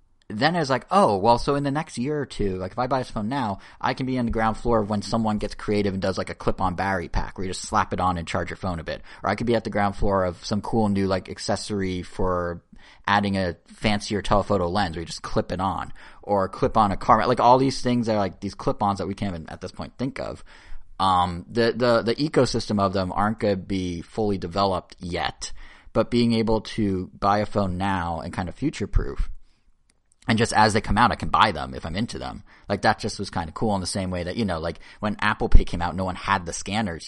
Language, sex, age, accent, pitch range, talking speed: English, male, 30-49, American, 90-110 Hz, 265 wpm